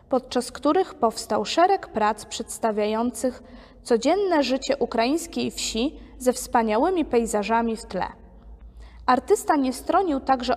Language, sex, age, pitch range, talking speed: Polish, female, 20-39, 225-295 Hz, 110 wpm